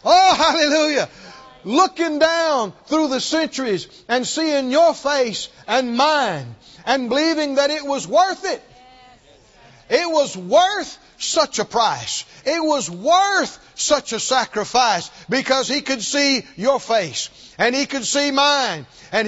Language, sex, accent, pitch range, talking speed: English, male, American, 260-315 Hz, 135 wpm